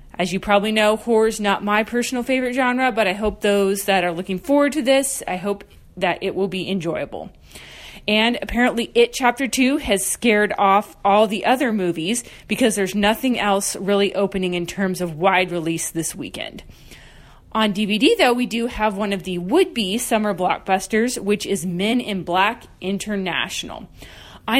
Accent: American